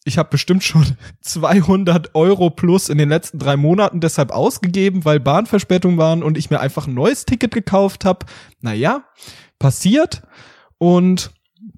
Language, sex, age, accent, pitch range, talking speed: German, male, 20-39, German, 130-185 Hz, 150 wpm